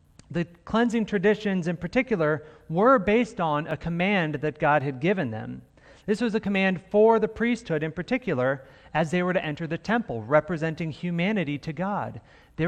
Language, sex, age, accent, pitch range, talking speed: English, male, 40-59, American, 130-190 Hz, 170 wpm